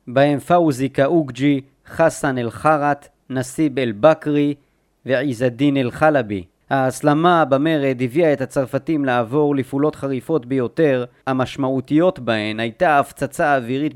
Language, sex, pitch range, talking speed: Hebrew, male, 130-155 Hz, 105 wpm